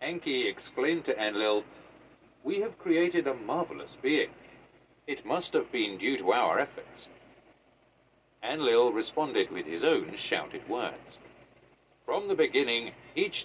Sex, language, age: male, English, 50-69